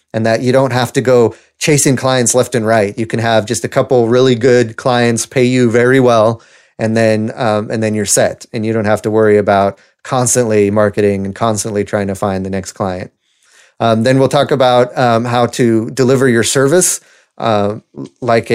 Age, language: 30-49, English